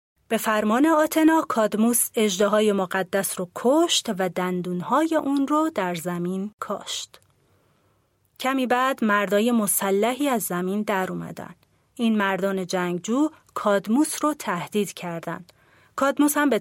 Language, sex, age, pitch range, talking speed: Persian, female, 30-49, 190-275 Hz, 125 wpm